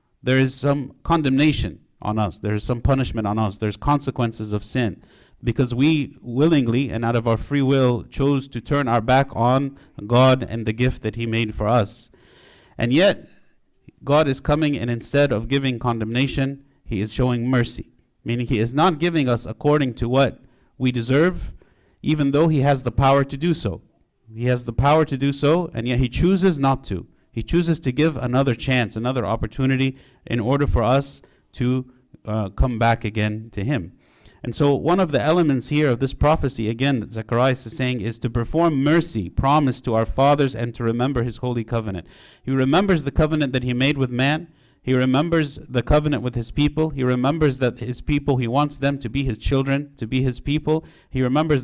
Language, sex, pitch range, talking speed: English, male, 120-145 Hz, 195 wpm